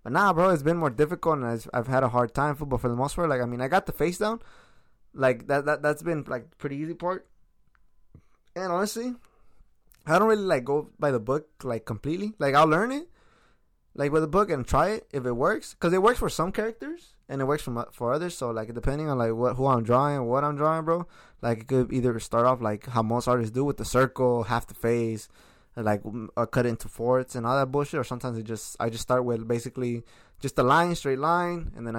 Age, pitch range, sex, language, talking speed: 20-39, 120-160 Hz, male, English, 240 wpm